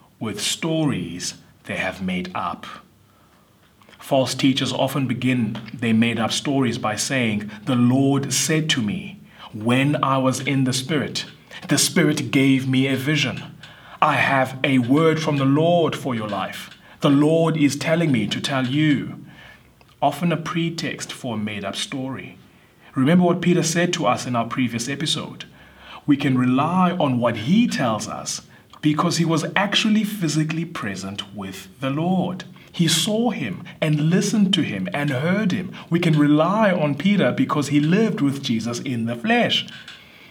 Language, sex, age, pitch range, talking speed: English, male, 30-49, 135-175 Hz, 160 wpm